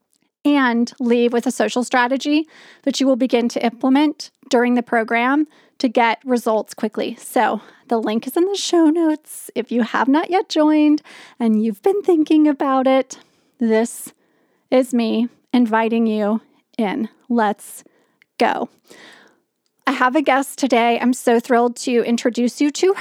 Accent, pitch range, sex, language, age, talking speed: American, 230-275 Hz, female, English, 30-49, 155 wpm